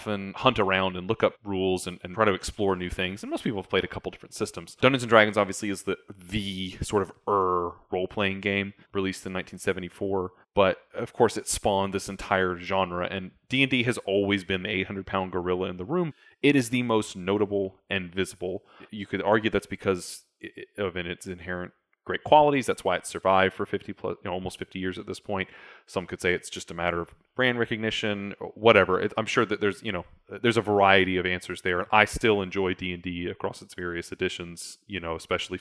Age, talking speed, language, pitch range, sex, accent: 30-49, 210 wpm, English, 90-110 Hz, male, American